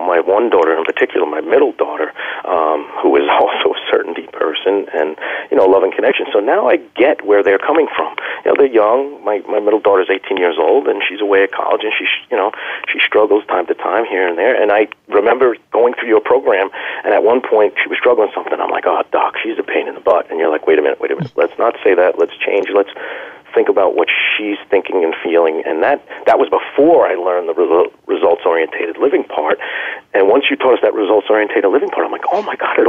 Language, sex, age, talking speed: English, male, 40-59, 250 wpm